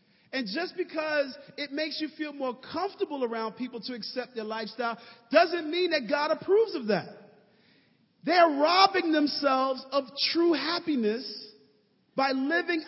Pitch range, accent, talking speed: 245-320 Hz, American, 140 wpm